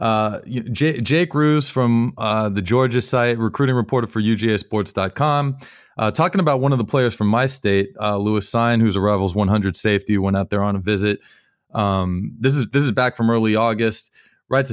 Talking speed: 190 wpm